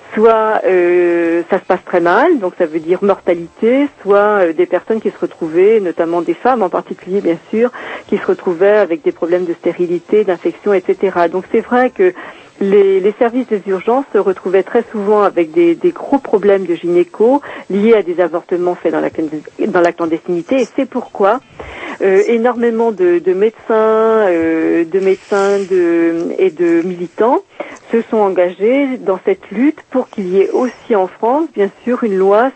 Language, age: French, 50-69